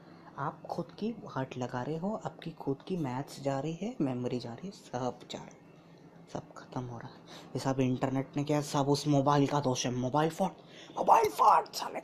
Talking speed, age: 205 wpm, 20-39